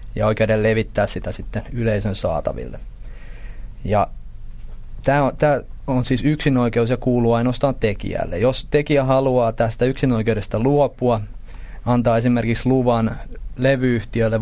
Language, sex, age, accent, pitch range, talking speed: Finnish, male, 20-39, native, 110-125 Hz, 110 wpm